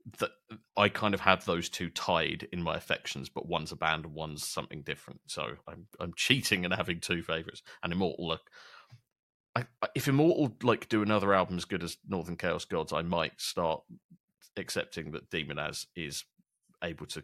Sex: male